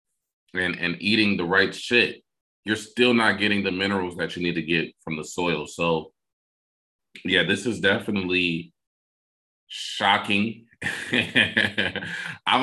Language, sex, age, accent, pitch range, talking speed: English, male, 20-39, American, 85-100 Hz, 130 wpm